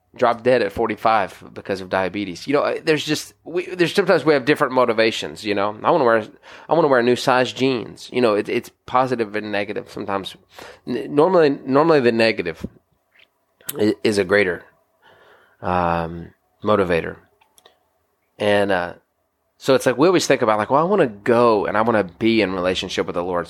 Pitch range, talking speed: 95-130 Hz, 180 wpm